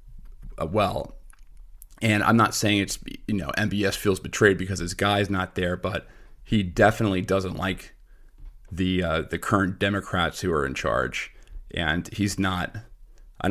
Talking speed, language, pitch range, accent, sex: 155 wpm, English, 90-105 Hz, American, male